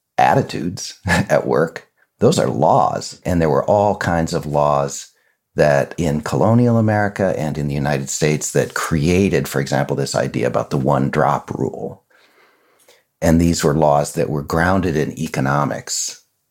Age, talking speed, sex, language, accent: 50-69, 155 wpm, male, English, American